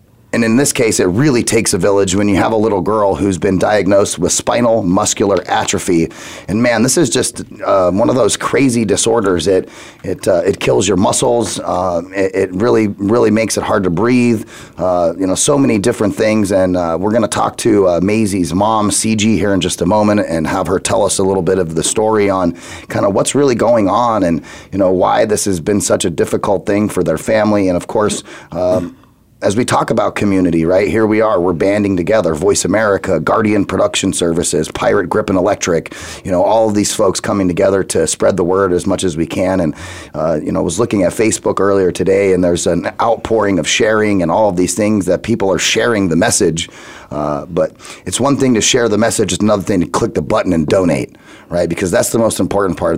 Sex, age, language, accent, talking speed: male, 30-49, English, American, 225 wpm